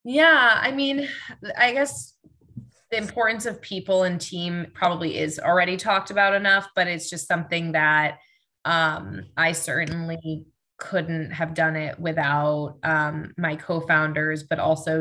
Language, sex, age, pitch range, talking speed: English, female, 20-39, 160-185 Hz, 140 wpm